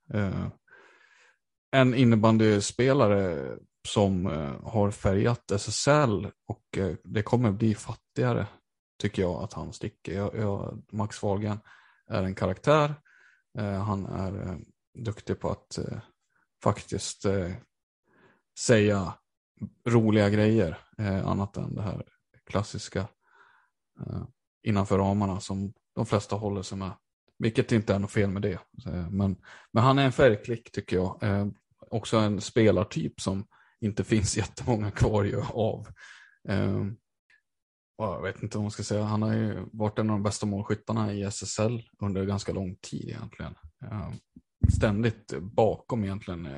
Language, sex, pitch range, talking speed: Swedish, male, 95-110 Hz, 130 wpm